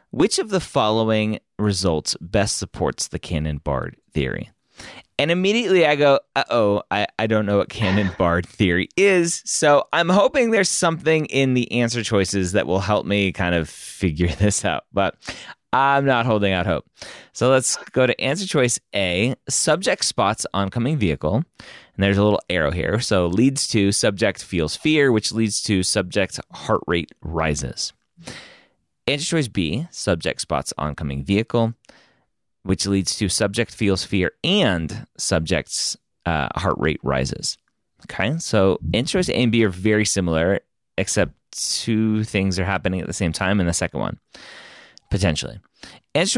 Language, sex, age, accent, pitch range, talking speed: English, male, 30-49, American, 90-125 Hz, 160 wpm